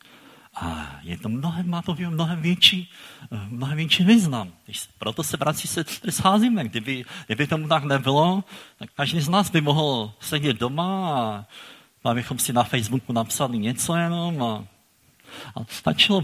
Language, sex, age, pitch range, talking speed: Czech, male, 50-69, 110-150 Hz, 155 wpm